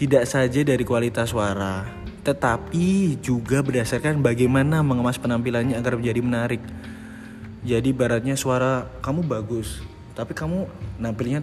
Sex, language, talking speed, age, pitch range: male, Indonesian, 115 wpm, 20-39, 110-140 Hz